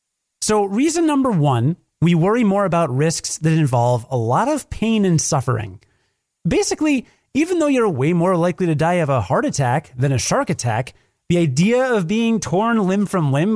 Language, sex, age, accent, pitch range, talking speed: English, male, 30-49, American, 130-195 Hz, 185 wpm